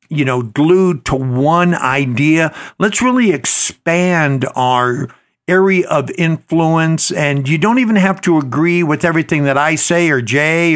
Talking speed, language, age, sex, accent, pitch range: 150 wpm, English, 60-79, male, American, 135-170 Hz